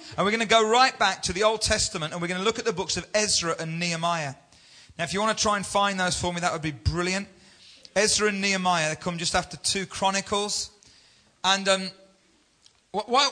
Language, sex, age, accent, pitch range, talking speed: English, male, 40-59, British, 165-210 Hz, 225 wpm